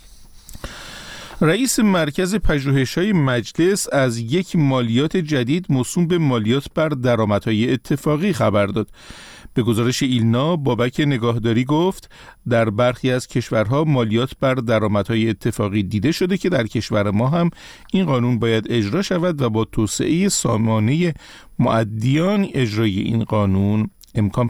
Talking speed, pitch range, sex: 125 wpm, 115-150 Hz, male